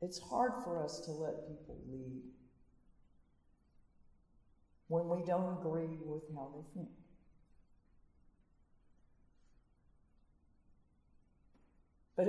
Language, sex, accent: English, female, American